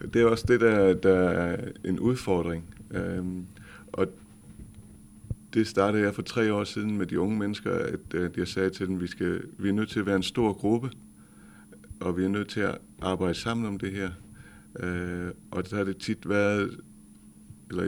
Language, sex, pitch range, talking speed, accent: Danish, male, 90-105 Hz, 190 wpm, native